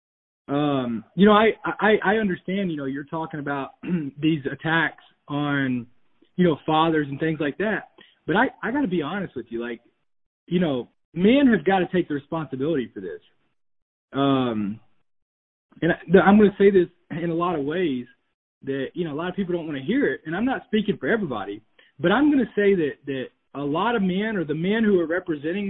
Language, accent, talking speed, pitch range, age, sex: English, American, 210 wpm, 150-210 Hz, 20-39, male